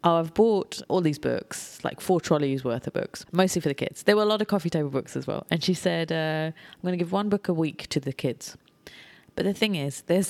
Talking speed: 270 wpm